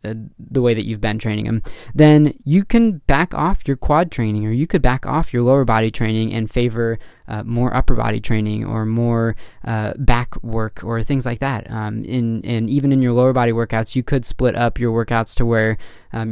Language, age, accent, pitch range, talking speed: English, 20-39, American, 110-130 Hz, 215 wpm